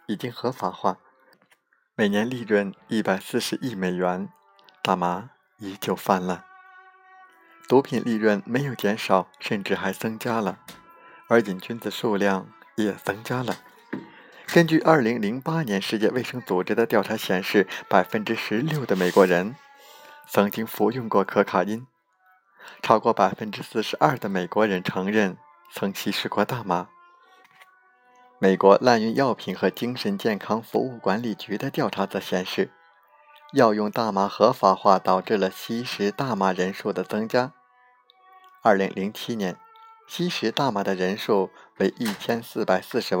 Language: Chinese